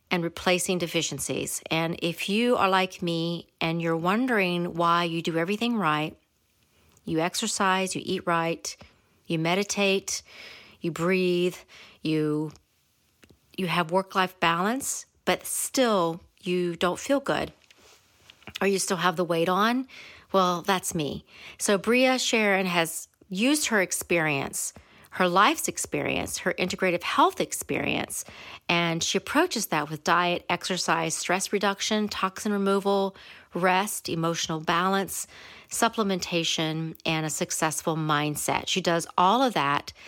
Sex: female